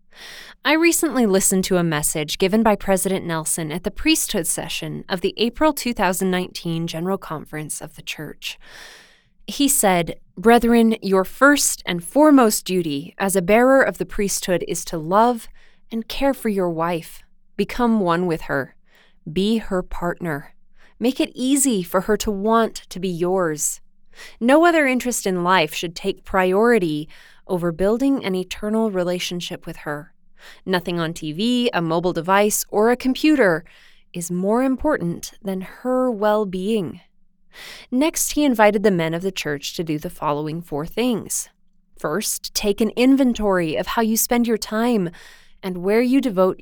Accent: American